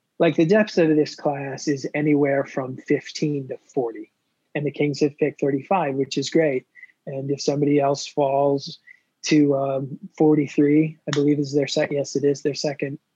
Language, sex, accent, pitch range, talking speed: English, male, American, 140-160 Hz, 180 wpm